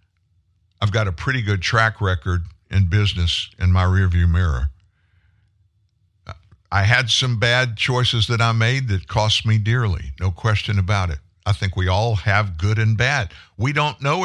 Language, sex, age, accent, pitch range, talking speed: English, male, 60-79, American, 90-110 Hz, 170 wpm